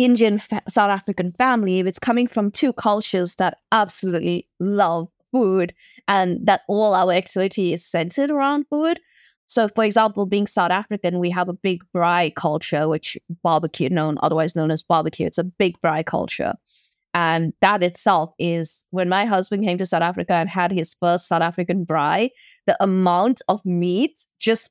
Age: 20-39